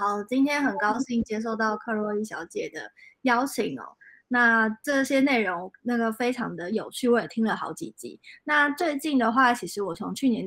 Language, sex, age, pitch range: Chinese, female, 20-39, 220-255 Hz